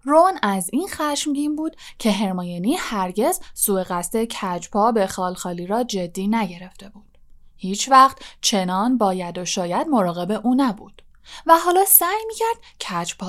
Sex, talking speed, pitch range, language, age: female, 140 wpm, 185-265 Hz, Persian, 10-29